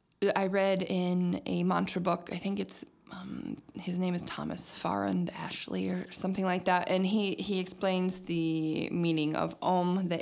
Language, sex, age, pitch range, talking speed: English, female, 20-39, 170-185 Hz, 170 wpm